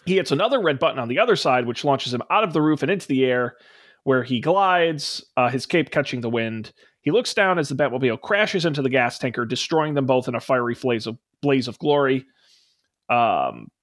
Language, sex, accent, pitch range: English, male, American, 125-165 Hz